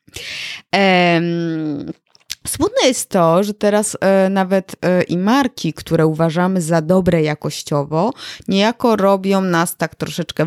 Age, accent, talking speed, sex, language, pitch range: 20-39, native, 105 wpm, female, Polish, 160-215 Hz